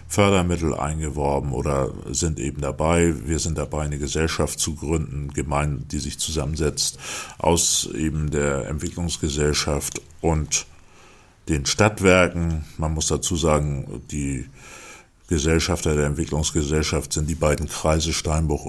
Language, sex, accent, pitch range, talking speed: German, male, German, 75-85 Hz, 120 wpm